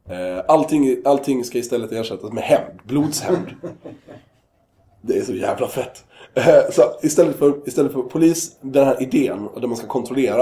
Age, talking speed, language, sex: 20-39, 150 wpm, Swedish, male